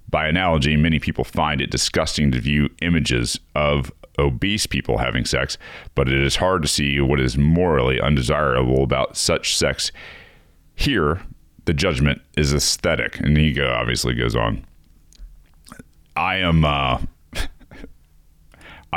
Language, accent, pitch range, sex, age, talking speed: English, American, 70-80 Hz, male, 30-49, 130 wpm